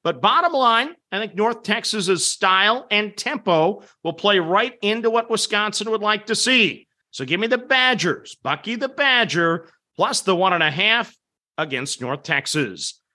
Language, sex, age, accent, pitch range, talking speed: English, male, 50-69, American, 185-230 Hz, 170 wpm